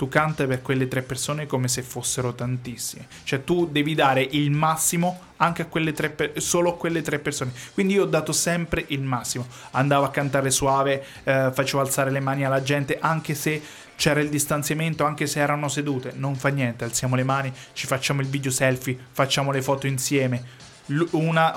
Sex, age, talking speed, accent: male, 20-39, 190 wpm, native